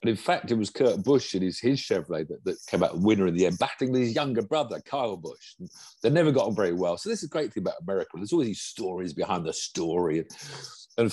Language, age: English, 50-69